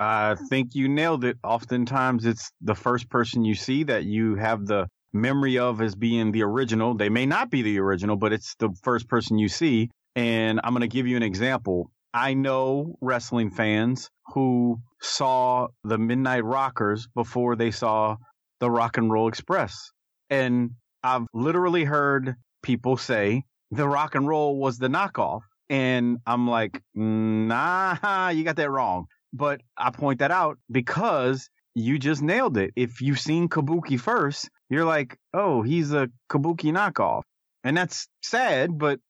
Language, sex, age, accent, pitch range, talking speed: English, male, 30-49, American, 110-145 Hz, 165 wpm